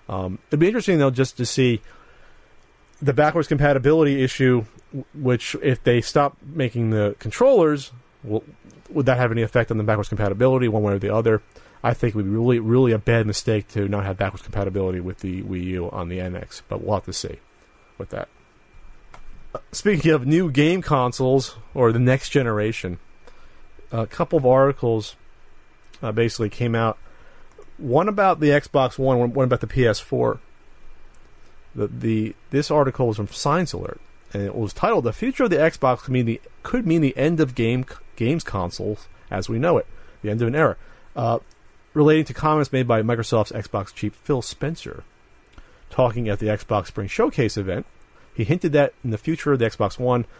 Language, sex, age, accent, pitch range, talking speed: English, male, 40-59, American, 105-145 Hz, 180 wpm